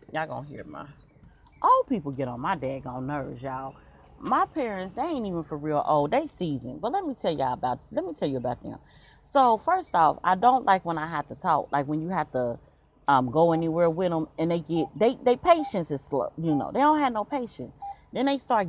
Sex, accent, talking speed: female, American, 235 wpm